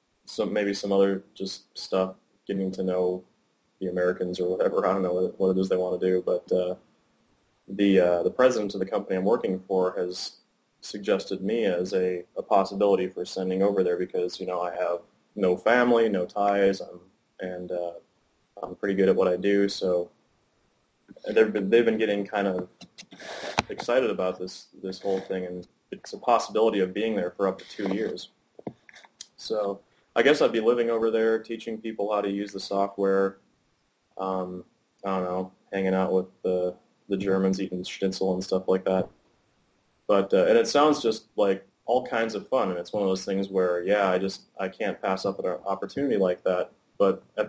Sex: male